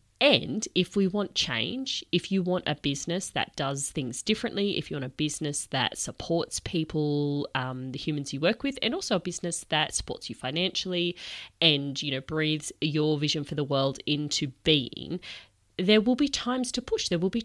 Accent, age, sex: Australian, 30-49, female